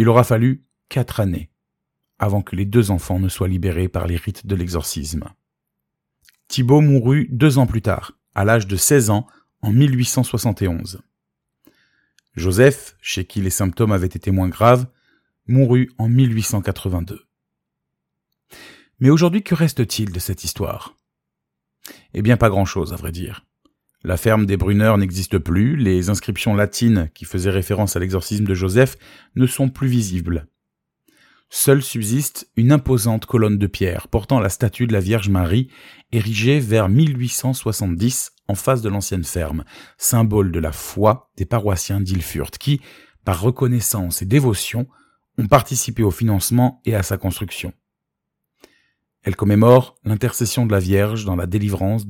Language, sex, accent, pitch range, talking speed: French, male, French, 95-125 Hz, 145 wpm